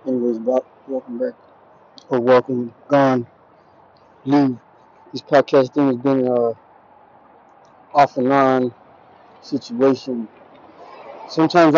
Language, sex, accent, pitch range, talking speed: English, male, American, 130-165 Hz, 90 wpm